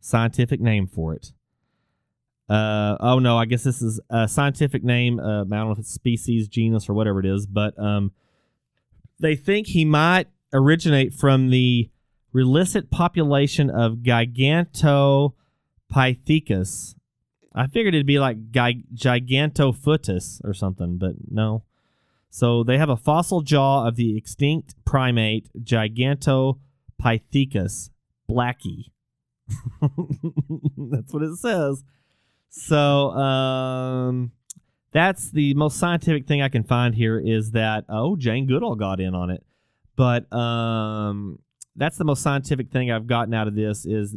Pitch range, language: 105-135 Hz, English